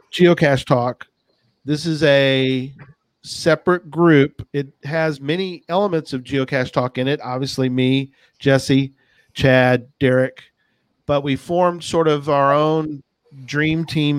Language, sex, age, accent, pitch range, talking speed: English, male, 40-59, American, 125-150 Hz, 125 wpm